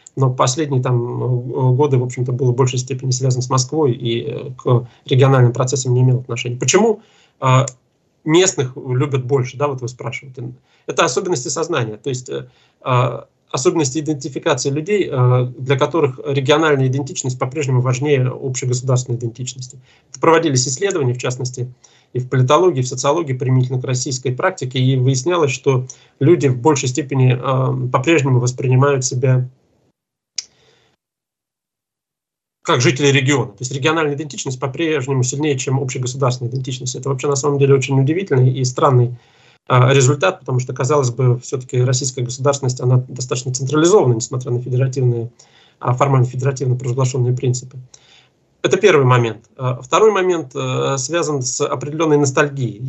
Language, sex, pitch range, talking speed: Russian, male, 125-145 Hz, 130 wpm